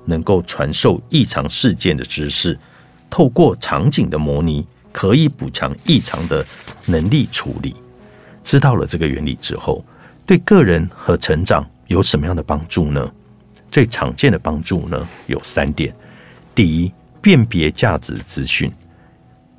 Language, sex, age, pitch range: Chinese, male, 50-69, 75-115 Hz